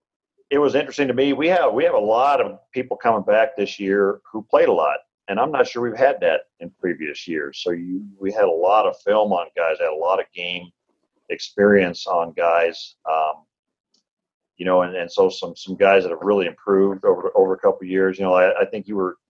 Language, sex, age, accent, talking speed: English, male, 40-59, American, 235 wpm